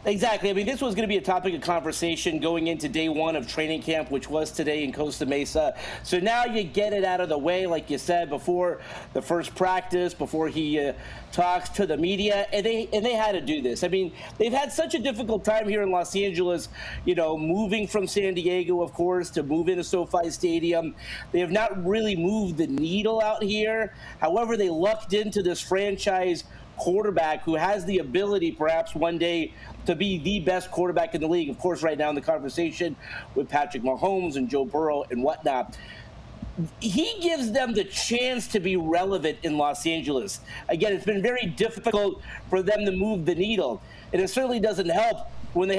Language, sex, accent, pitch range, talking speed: English, male, American, 165-205 Hz, 205 wpm